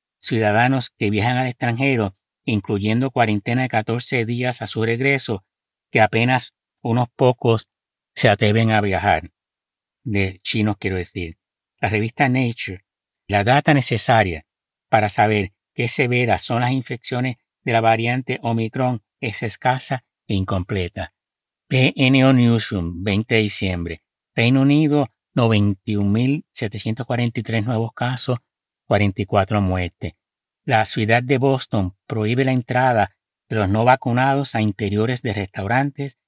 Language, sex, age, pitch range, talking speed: Spanish, male, 60-79, 100-125 Hz, 120 wpm